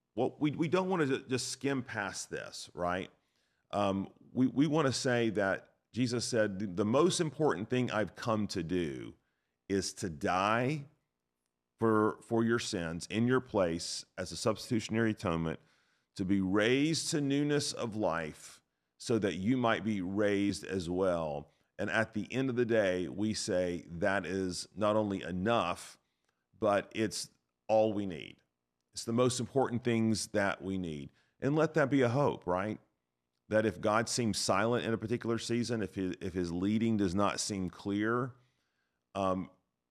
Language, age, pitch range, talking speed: English, 40-59, 90-115 Hz, 165 wpm